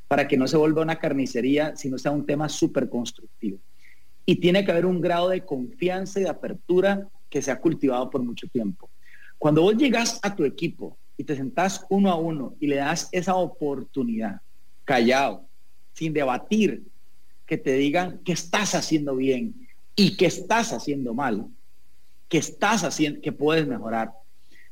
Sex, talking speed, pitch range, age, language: male, 165 wpm, 145-195 Hz, 40-59, English